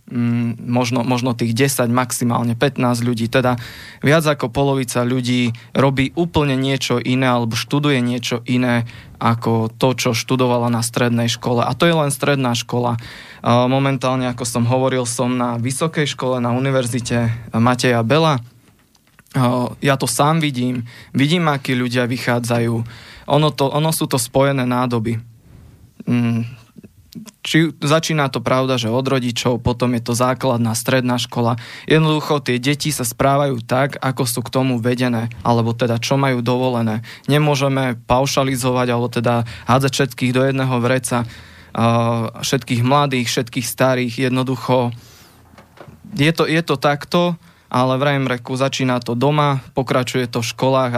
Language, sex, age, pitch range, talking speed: Slovak, male, 20-39, 120-135 Hz, 140 wpm